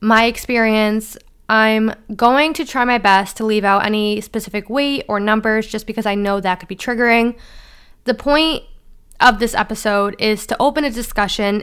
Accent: American